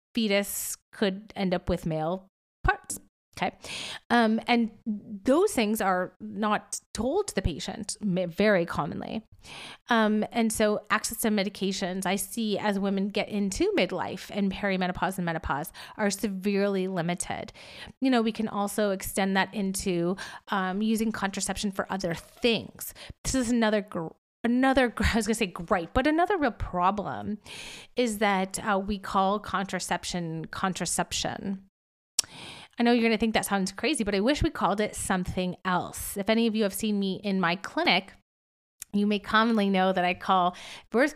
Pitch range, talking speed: 185-220 Hz, 160 wpm